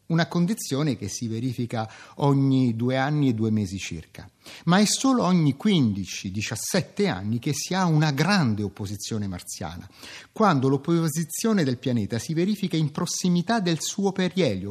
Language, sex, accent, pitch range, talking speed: Italian, male, native, 115-180 Hz, 145 wpm